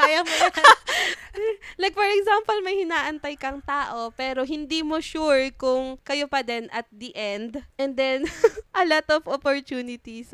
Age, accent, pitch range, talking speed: 20-39, Filipino, 205-275 Hz, 155 wpm